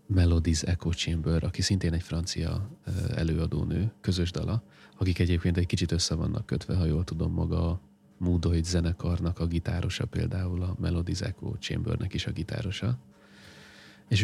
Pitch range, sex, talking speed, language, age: 85-105 Hz, male, 150 wpm, Hungarian, 30-49